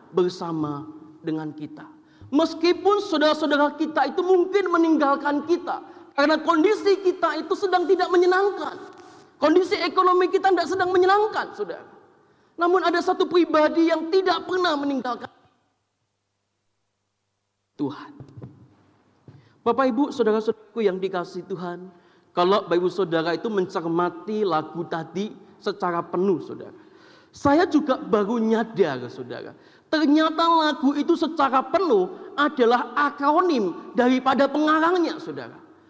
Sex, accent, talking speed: male, native, 110 wpm